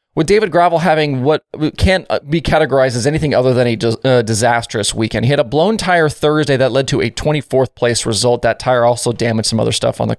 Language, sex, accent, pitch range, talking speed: English, male, American, 125-160 Hz, 220 wpm